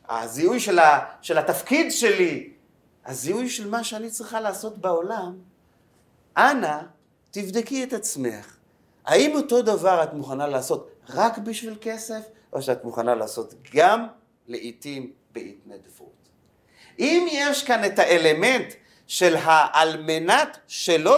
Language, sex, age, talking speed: Hebrew, male, 40-59, 120 wpm